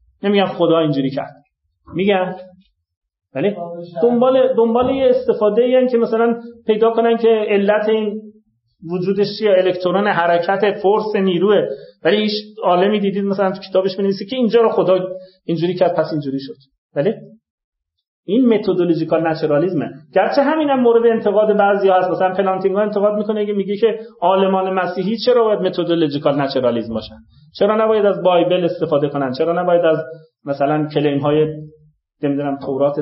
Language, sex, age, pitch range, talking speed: Persian, male, 30-49, 155-210 Hz, 140 wpm